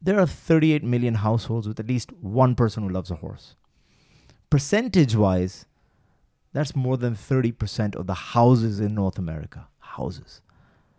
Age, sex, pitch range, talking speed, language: 30-49, male, 110-155 Hz, 140 wpm, Dutch